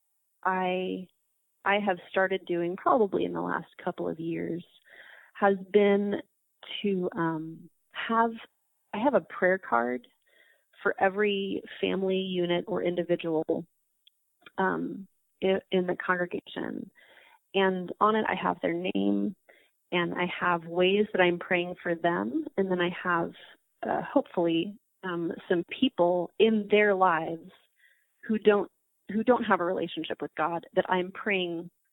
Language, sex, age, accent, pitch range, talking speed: English, female, 30-49, American, 175-205 Hz, 135 wpm